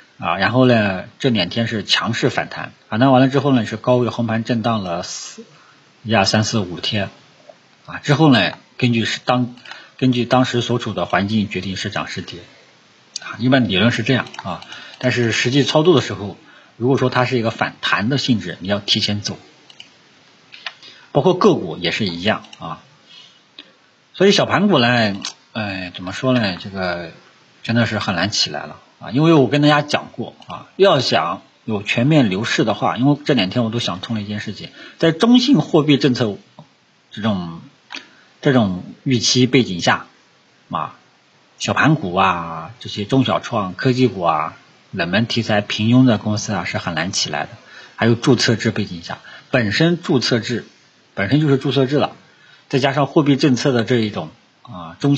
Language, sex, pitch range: Chinese, male, 105-130 Hz